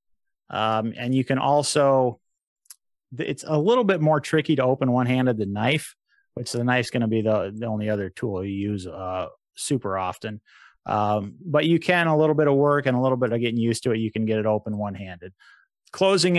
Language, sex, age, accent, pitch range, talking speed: English, male, 30-49, American, 115-145 Hz, 210 wpm